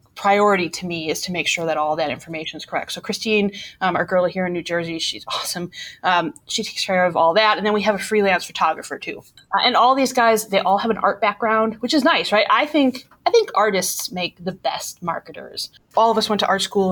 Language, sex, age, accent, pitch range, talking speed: English, female, 20-39, American, 180-220 Hz, 250 wpm